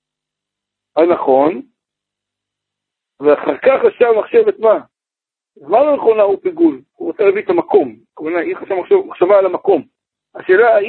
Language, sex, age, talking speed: Hebrew, male, 60-79, 120 wpm